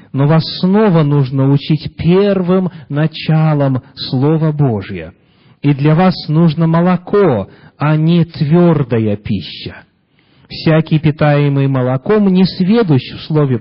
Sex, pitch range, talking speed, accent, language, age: male, 135-185 Hz, 105 wpm, native, Russian, 40-59